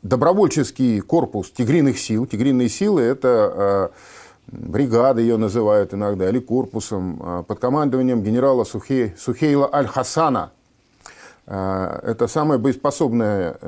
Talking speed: 90 wpm